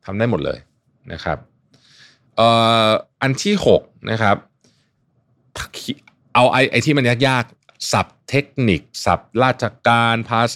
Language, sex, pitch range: Thai, male, 90-125 Hz